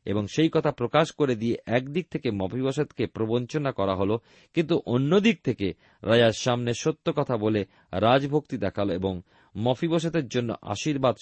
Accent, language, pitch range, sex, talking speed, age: native, Bengali, 100-150 Hz, male, 150 wpm, 40-59